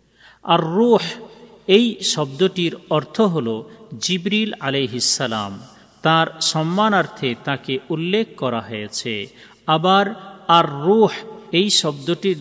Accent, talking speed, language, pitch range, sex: native, 95 wpm, Bengali, 130-185 Hz, male